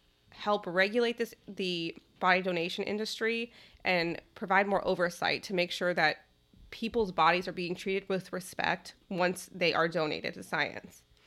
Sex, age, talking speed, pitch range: female, 20-39, 150 wpm, 165-205 Hz